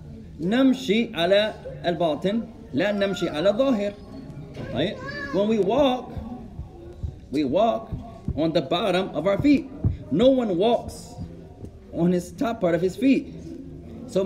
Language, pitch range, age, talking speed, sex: English, 175-230 Hz, 30-49, 95 wpm, male